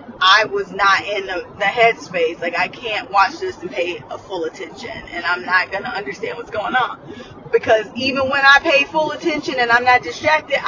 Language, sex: English, female